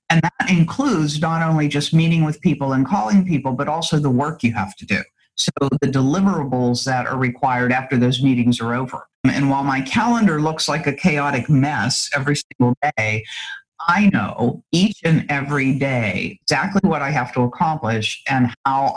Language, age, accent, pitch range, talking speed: English, 50-69, American, 120-150 Hz, 180 wpm